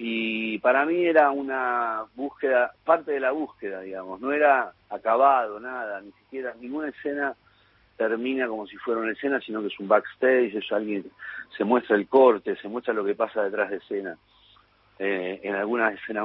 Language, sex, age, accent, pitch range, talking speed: Spanish, male, 40-59, Argentinian, 105-130 Hz, 175 wpm